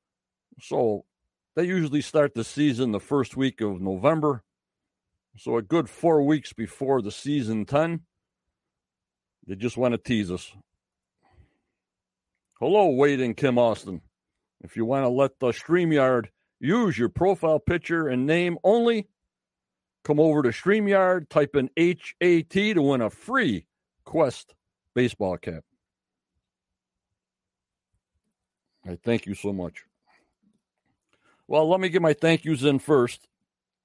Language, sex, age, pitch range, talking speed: English, male, 60-79, 105-150 Hz, 130 wpm